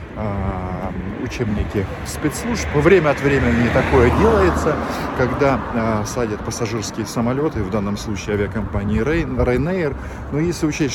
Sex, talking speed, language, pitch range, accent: male, 110 wpm, Russian, 100-125 Hz, native